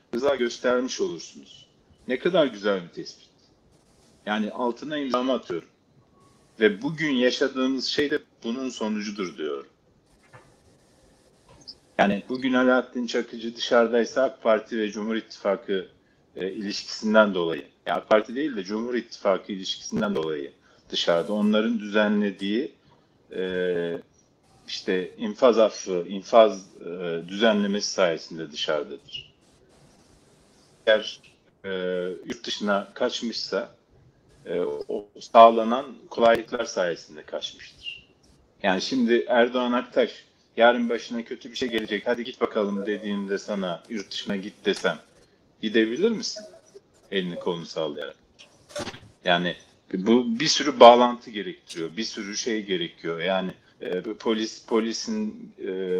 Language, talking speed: Turkish, 115 wpm